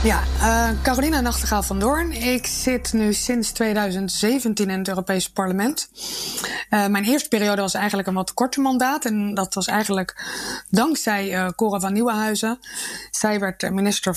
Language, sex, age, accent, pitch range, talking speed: English, female, 20-39, Dutch, 190-225 Hz, 155 wpm